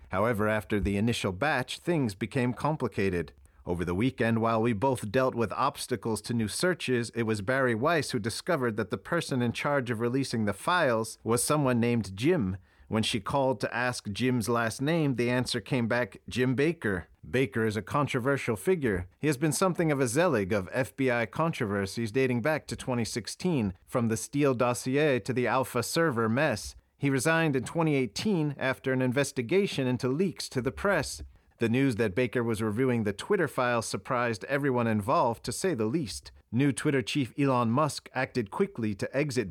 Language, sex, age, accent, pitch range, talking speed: English, male, 40-59, American, 110-135 Hz, 180 wpm